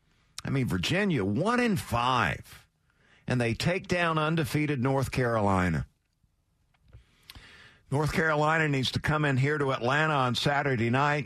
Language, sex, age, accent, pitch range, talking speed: English, male, 50-69, American, 110-150 Hz, 125 wpm